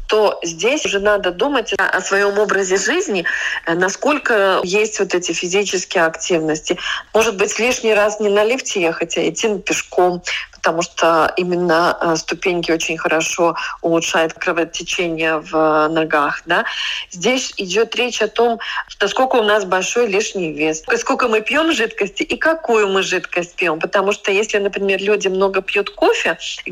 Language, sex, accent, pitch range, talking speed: Russian, female, native, 185-230 Hz, 150 wpm